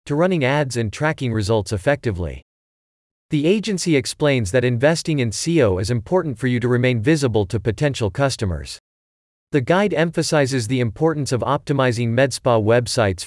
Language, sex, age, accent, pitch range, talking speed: English, male, 40-59, American, 110-150 Hz, 150 wpm